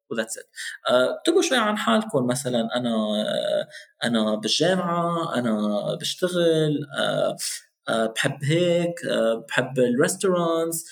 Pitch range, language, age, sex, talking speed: 130-180 Hz, Arabic, 20-39, male, 115 wpm